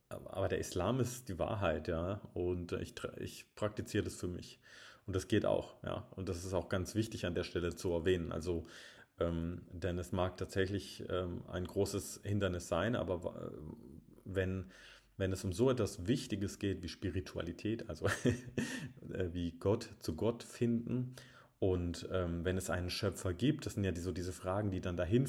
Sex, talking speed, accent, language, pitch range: male, 175 wpm, German, German, 90-105 Hz